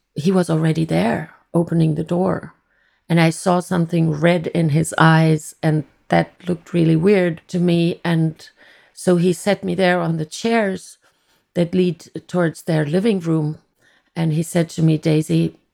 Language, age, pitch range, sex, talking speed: English, 30-49, 155-175 Hz, female, 165 wpm